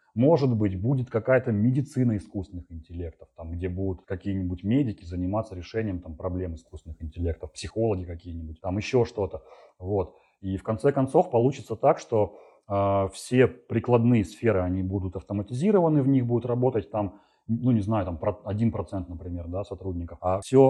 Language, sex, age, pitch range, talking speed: Russian, male, 30-49, 95-120 Hz, 155 wpm